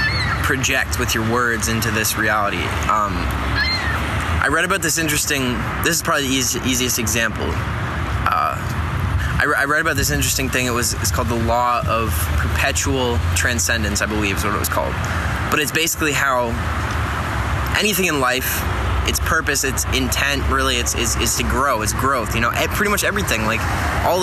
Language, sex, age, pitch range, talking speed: English, male, 10-29, 90-125 Hz, 175 wpm